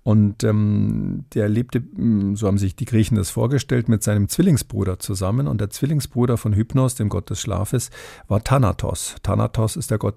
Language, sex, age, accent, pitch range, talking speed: German, male, 50-69, German, 105-125 Hz, 175 wpm